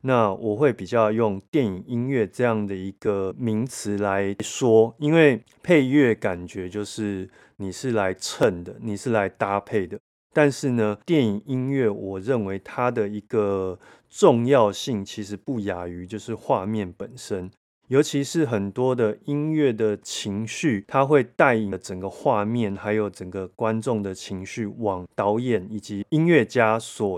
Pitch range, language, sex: 100-130 Hz, Chinese, male